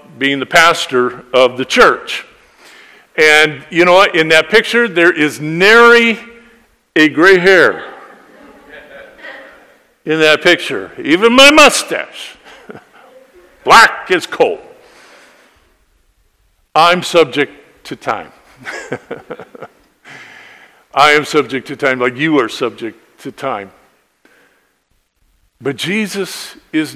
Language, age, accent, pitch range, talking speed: English, 50-69, American, 140-185 Hz, 100 wpm